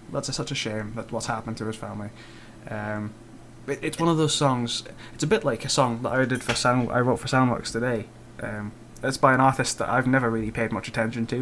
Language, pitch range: English, 115-125 Hz